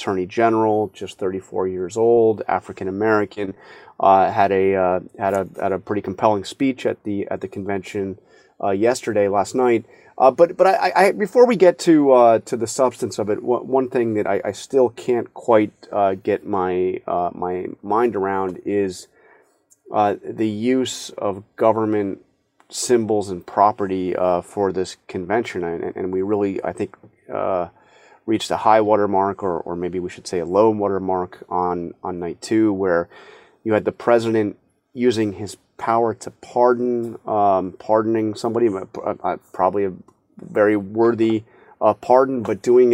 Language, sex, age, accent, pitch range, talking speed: English, male, 30-49, American, 95-115 Hz, 165 wpm